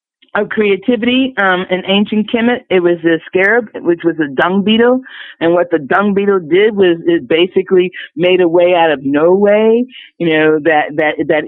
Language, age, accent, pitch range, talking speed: English, 50-69, American, 160-205 Hz, 190 wpm